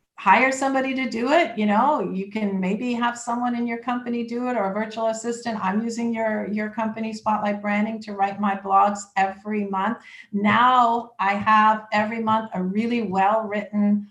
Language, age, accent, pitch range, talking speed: English, 50-69, American, 195-235 Hz, 185 wpm